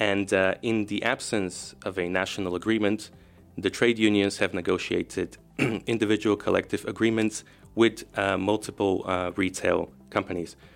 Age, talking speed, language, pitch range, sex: 30-49, 130 wpm, English, 90-105 Hz, male